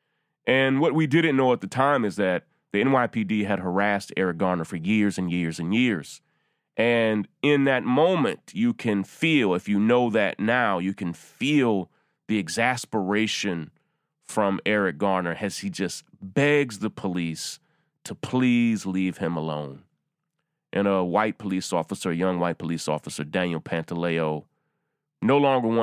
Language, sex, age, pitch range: English, male, 30-49, 90-120 Hz